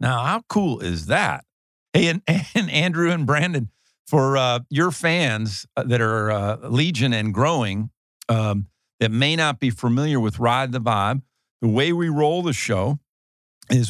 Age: 50-69